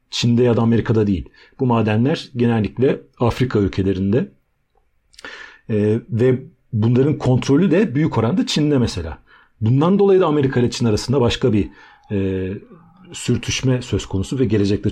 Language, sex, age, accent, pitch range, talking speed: Turkish, male, 40-59, native, 100-125 Hz, 130 wpm